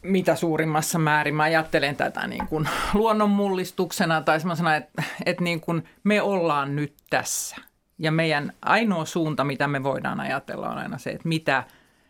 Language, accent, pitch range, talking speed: Finnish, native, 150-200 Hz, 155 wpm